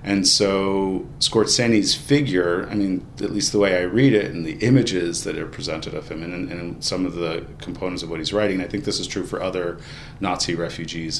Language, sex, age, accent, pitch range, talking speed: English, male, 40-59, American, 90-125 Hz, 220 wpm